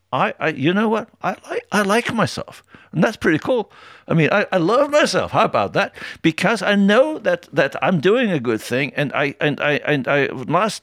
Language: English